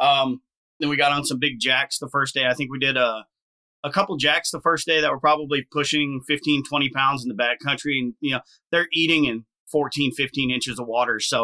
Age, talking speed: 30-49, 230 wpm